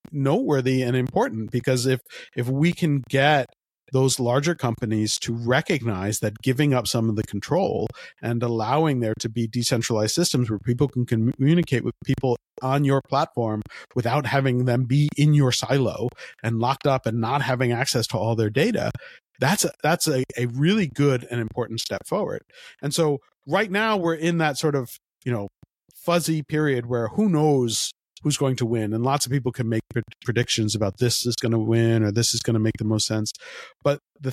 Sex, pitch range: male, 115-140 Hz